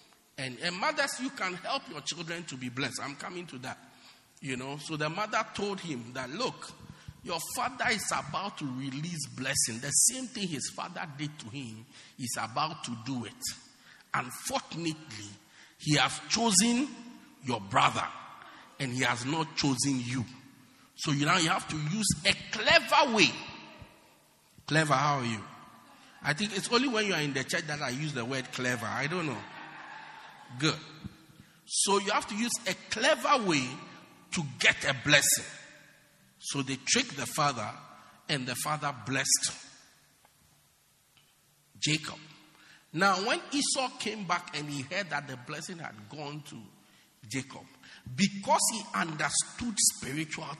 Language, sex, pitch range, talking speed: English, male, 135-200 Hz, 155 wpm